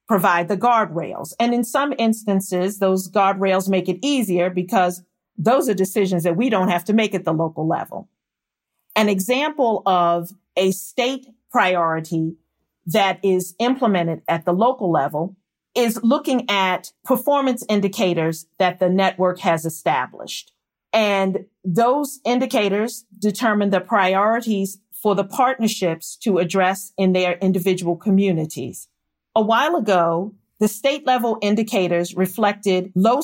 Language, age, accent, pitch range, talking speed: English, 40-59, American, 180-225 Hz, 130 wpm